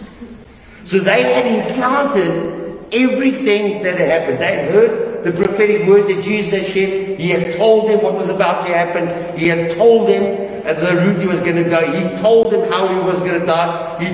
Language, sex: English, male